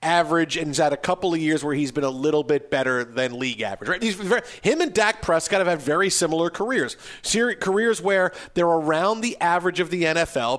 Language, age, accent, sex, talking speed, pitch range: English, 40-59, American, male, 220 wpm, 155-200 Hz